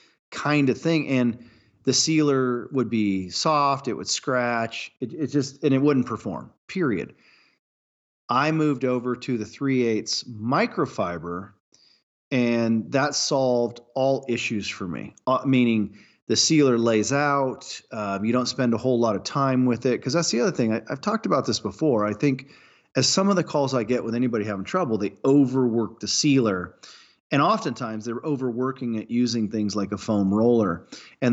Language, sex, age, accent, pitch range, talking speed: English, male, 40-59, American, 110-130 Hz, 175 wpm